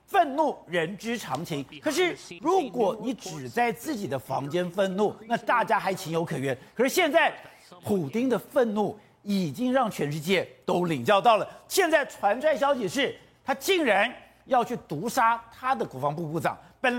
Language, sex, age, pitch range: Chinese, male, 50-69, 200-305 Hz